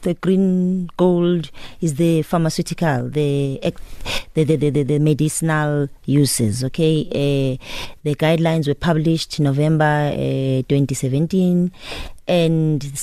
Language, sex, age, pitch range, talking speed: English, female, 30-49, 135-165 Hz, 100 wpm